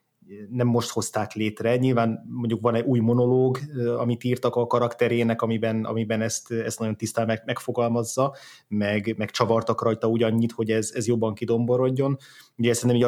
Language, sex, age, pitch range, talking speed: Hungarian, male, 20-39, 110-120 Hz, 155 wpm